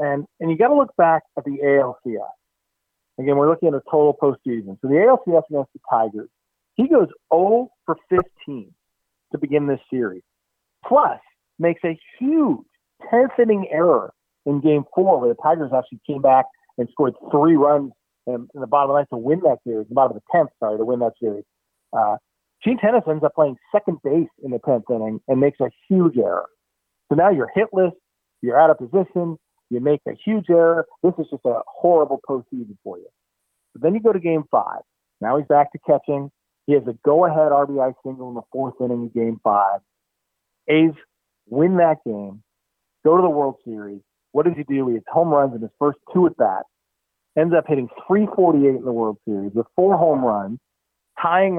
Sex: male